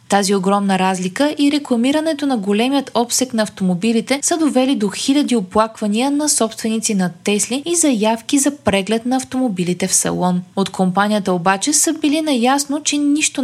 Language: Bulgarian